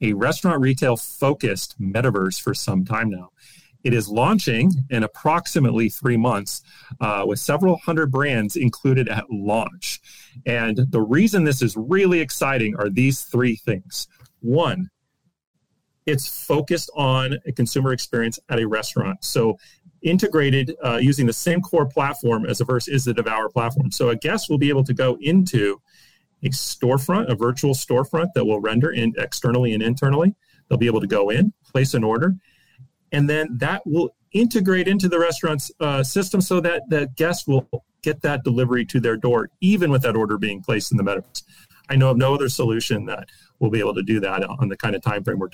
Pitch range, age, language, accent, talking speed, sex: 120-155 Hz, 40-59, English, American, 185 wpm, male